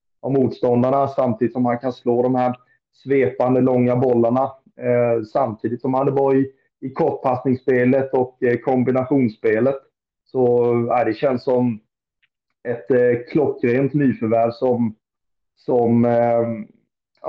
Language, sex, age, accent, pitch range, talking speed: Swedish, male, 30-49, native, 120-135 Hz, 130 wpm